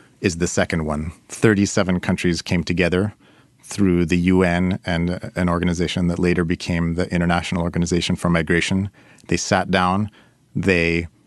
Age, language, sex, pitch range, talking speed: 30-49, English, male, 85-100 Hz, 140 wpm